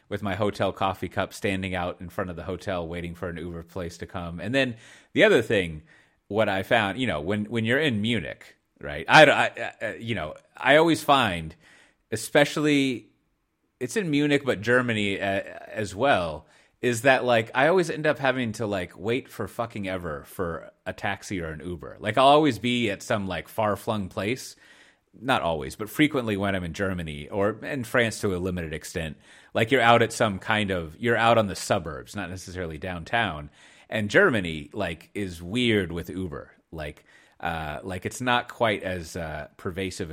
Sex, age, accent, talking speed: male, 30-49, American, 190 wpm